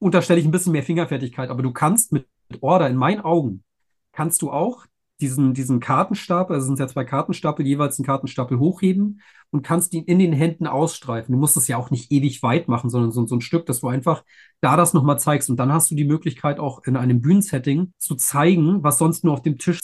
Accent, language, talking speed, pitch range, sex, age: German, German, 235 wpm, 130-165 Hz, male, 40-59